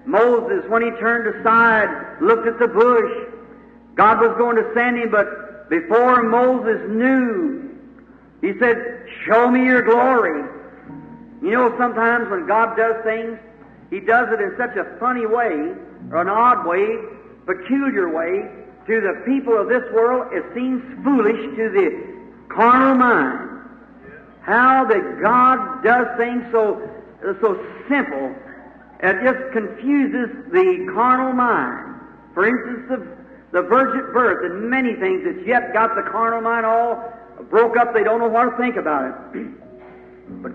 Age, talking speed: 50-69, 150 wpm